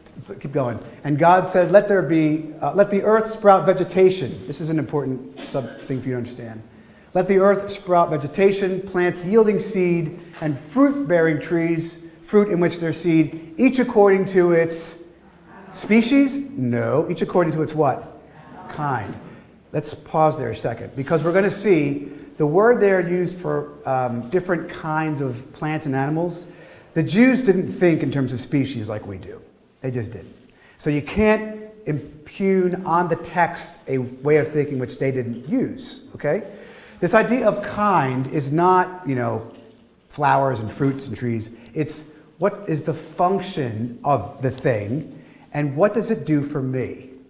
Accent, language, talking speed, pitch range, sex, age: American, English, 170 wpm, 140-185 Hz, male, 40-59